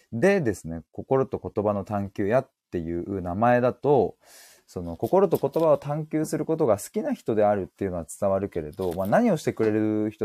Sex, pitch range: male, 90-135 Hz